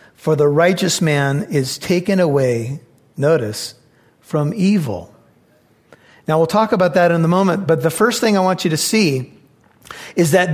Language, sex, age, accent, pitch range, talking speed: English, male, 40-59, American, 150-195 Hz, 165 wpm